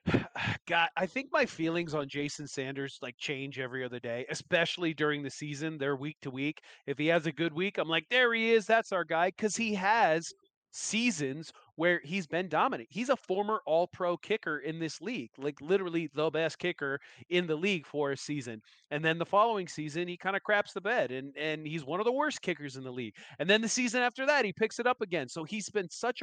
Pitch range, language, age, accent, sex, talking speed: 145-200 Hz, English, 30-49, American, male, 230 wpm